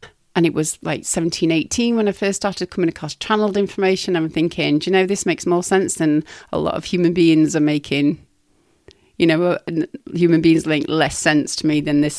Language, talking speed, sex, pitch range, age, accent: English, 210 wpm, female, 160-205 Hz, 30-49, British